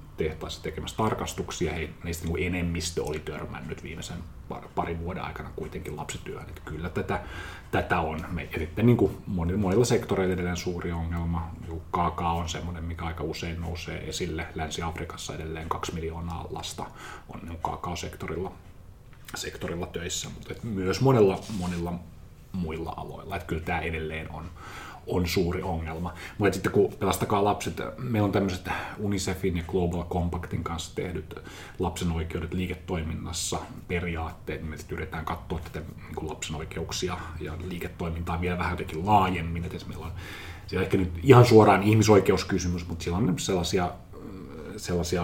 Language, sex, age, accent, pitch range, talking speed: Finnish, male, 30-49, native, 85-95 Hz, 135 wpm